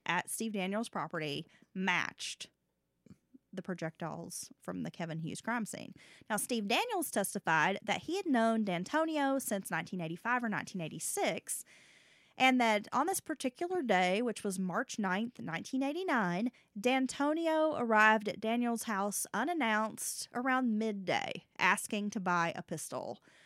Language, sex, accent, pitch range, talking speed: English, female, American, 190-260 Hz, 130 wpm